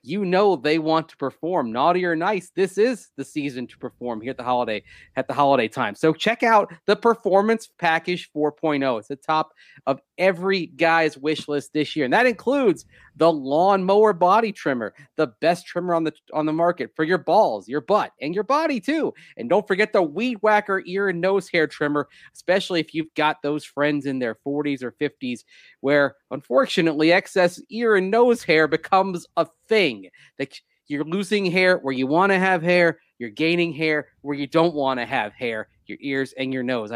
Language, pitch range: English, 135-180 Hz